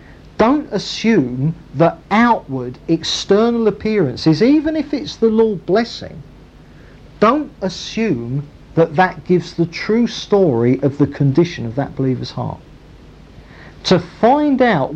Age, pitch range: 50-69, 135-195 Hz